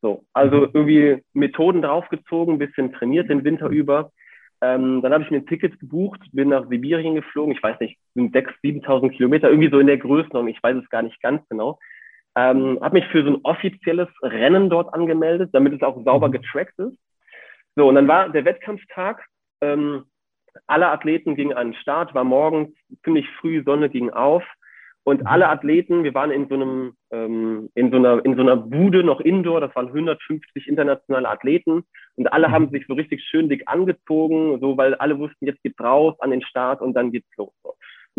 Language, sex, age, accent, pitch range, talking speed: German, male, 30-49, German, 130-170 Hz, 195 wpm